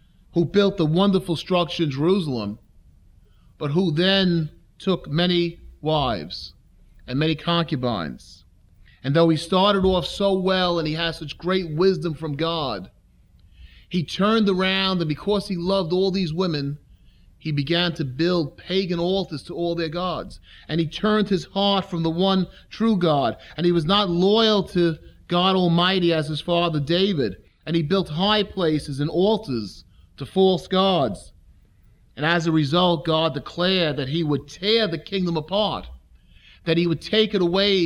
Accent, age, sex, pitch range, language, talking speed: American, 30-49, male, 130-185 Hz, English, 160 wpm